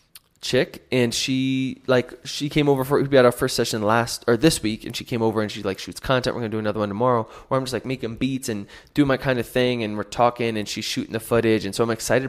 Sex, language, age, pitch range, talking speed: male, English, 20-39, 110-135 Hz, 275 wpm